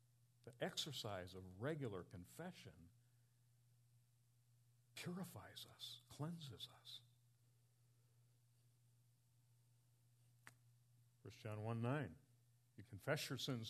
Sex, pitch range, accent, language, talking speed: male, 120-145 Hz, American, English, 70 wpm